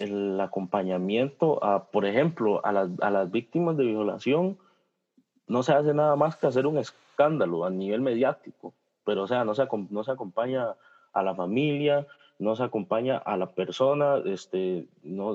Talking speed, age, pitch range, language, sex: 170 wpm, 30-49, 100-140 Hz, Spanish, male